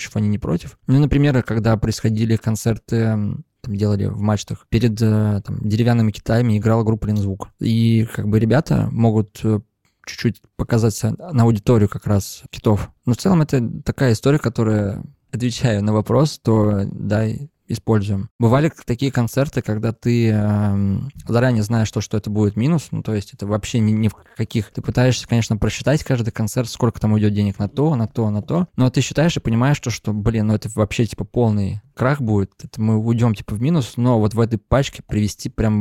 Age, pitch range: 20-39, 105-125 Hz